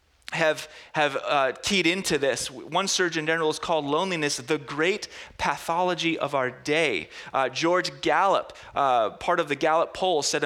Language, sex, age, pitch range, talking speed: English, male, 30-49, 125-170 Hz, 160 wpm